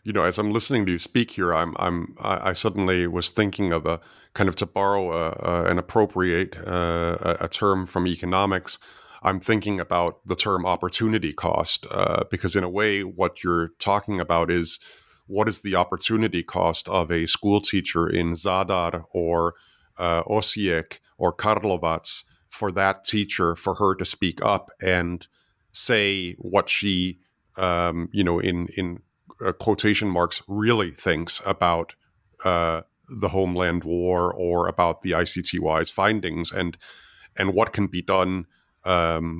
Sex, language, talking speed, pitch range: male, English, 150 wpm, 85-100 Hz